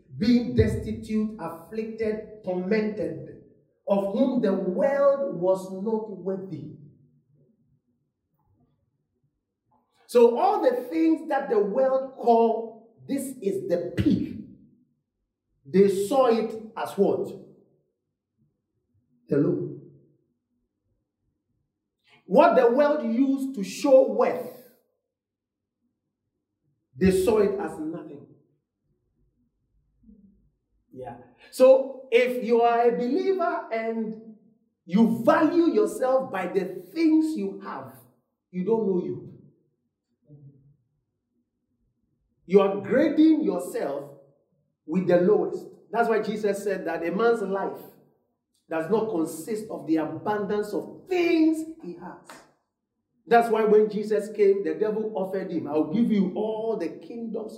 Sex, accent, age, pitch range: male, Nigerian, 50-69, 155-240 Hz